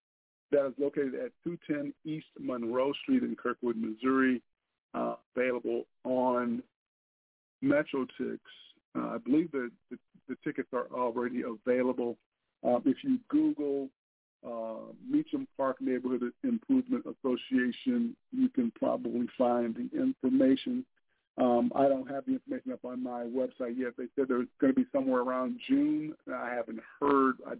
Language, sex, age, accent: English, male, 50-69, American